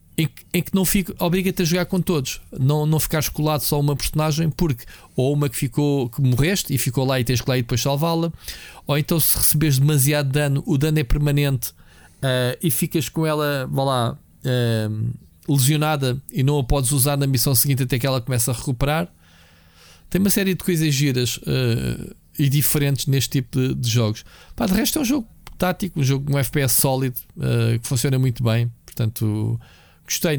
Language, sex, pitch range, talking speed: Portuguese, male, 110-145 Hz, 195 wpm